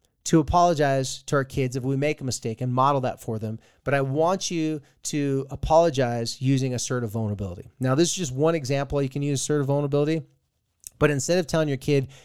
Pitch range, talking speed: 120-150 Hz, 200 wpm